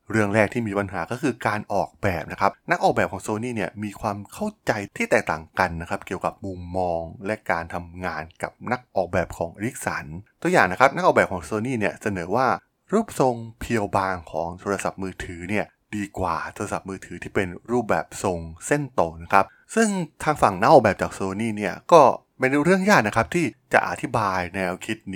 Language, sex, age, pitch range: Thai, male, 20-39, 95-115 Hz